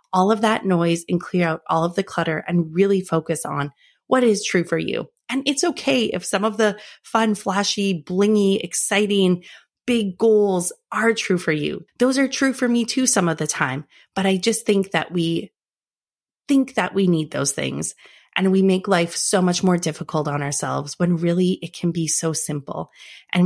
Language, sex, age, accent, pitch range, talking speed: English, female, 30-49, American, 165-210 Hz, 195 wpm